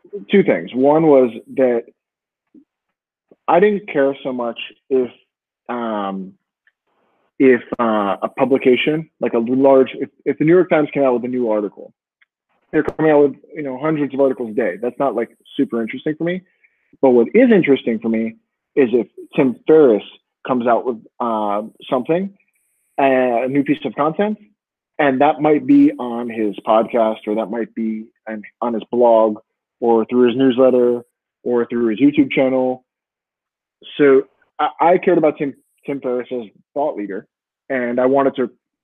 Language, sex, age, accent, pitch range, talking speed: English, male, 30-49, American, 115-150 Hz, 165 wpm